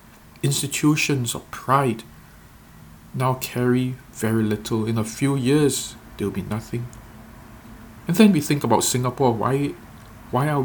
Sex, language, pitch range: male, English, 110-135 Hz